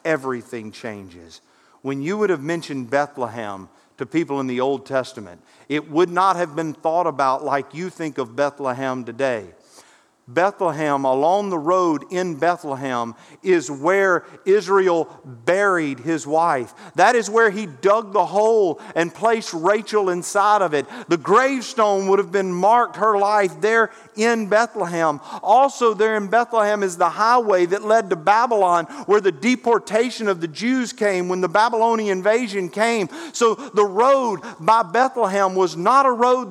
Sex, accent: male, American